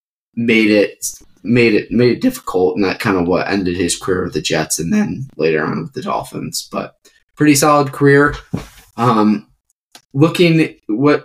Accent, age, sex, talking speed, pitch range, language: American, 20-39, male, 170 wpm, 115-150 Hz, English